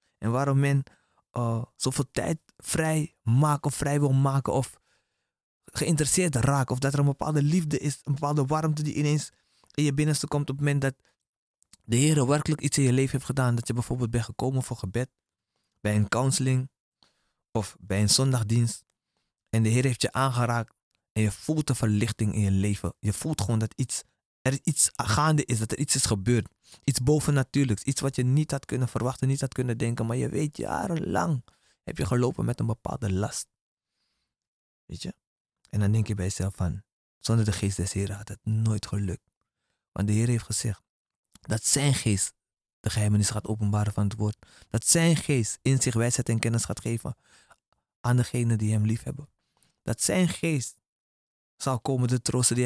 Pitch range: 110-140 Hz